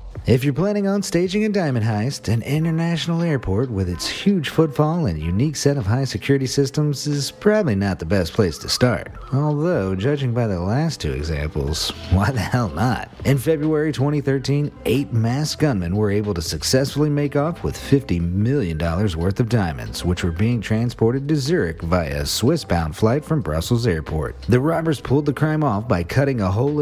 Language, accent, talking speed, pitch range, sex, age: English, American, 185 wpm, 95-145 Hz, male, 40-59